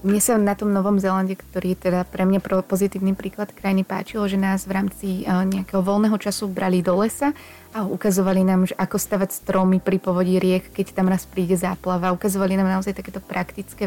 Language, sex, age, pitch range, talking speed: Slovak, female, 20-39, 180-195 Hz, 195 wpm